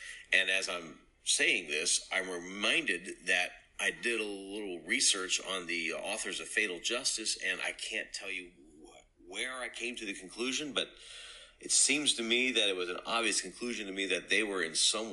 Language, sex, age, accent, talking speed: English, male, 40-59, American, 190 wpm